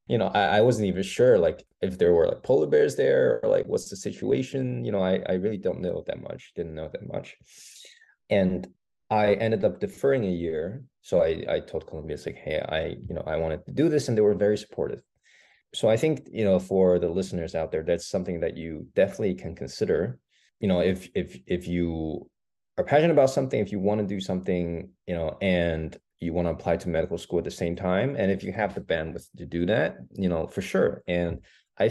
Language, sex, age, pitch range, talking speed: English, male, 20-39, 85-110 Hz, 230 wpm